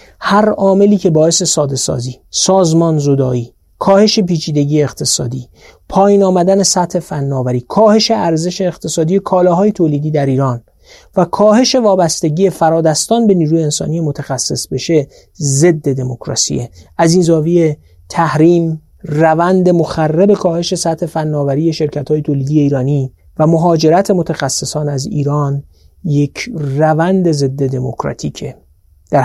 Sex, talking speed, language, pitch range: male, 115 wpm, Persian, 140-180 Hz